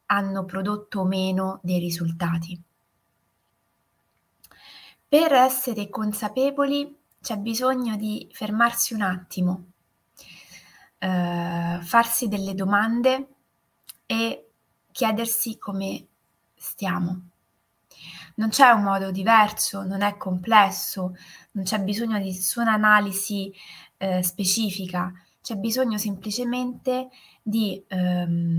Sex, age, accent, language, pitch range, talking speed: female, 20-39, native, Italian, 180-215 Hz, 90 wpm